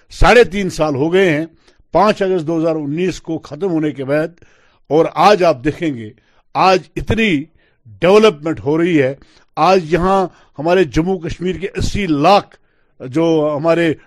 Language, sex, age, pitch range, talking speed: Urdu, male, 60-79, 145-180 Hz, 155 wpm